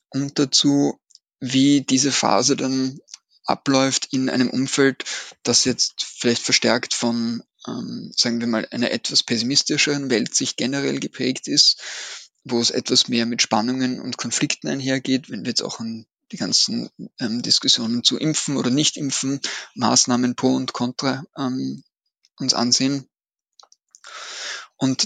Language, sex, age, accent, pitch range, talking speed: German, male, 20-39, German, 125-140 Hz, 135 wpm